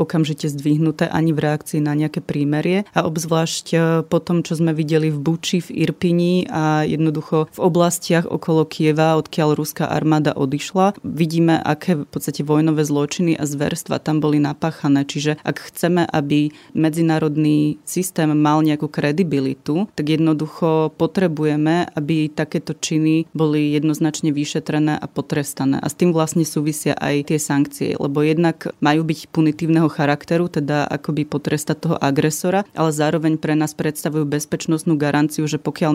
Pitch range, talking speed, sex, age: 150-165 Hz, 145 wpm, female, 30-49